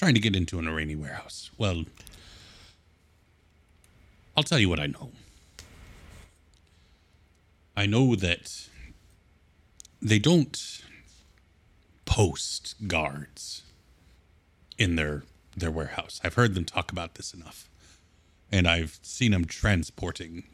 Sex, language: male, English